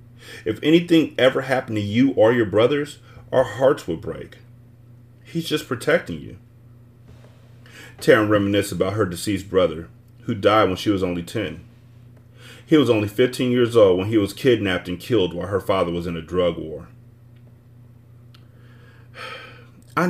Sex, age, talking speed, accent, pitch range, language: male, 30-49, 150 wpm, American, 115-125 Hz, English